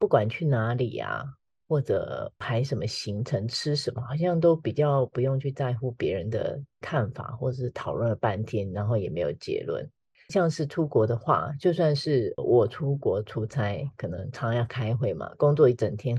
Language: Chinese